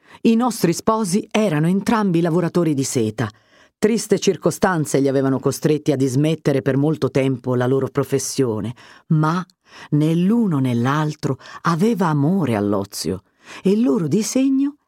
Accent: native